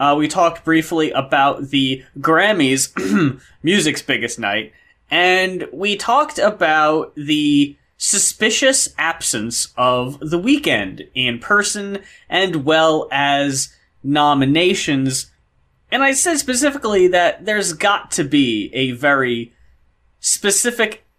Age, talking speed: 20-39, 110 wpm